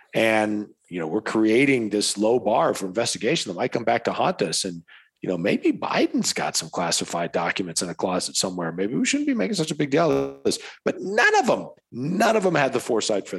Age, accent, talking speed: 40-59, American, 235 wpm